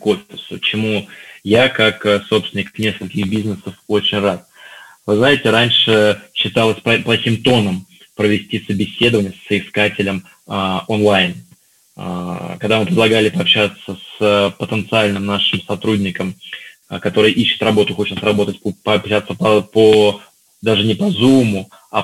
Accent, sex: native, male